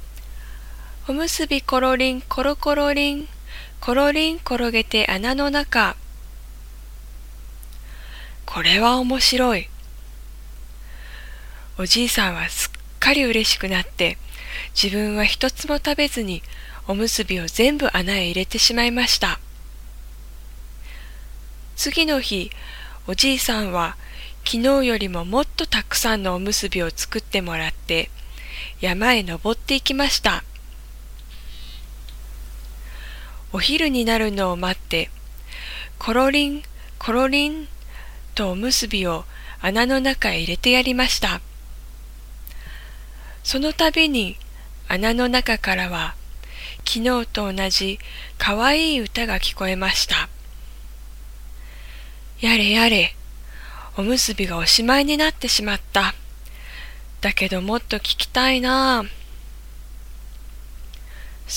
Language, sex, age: Japanese, female, 20-39